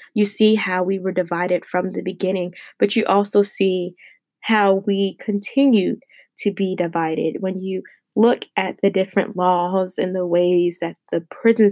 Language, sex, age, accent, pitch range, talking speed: English, female, 20-39, American, 185-215 Hz, 165 wpm